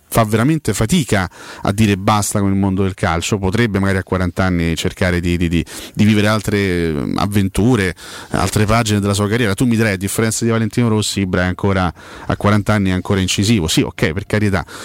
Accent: native